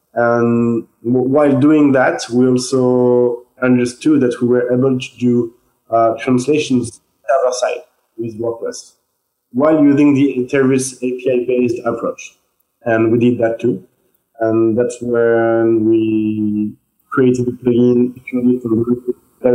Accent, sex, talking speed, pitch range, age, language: French, male, 135 wpm, 120-135 Hz, 20-39, English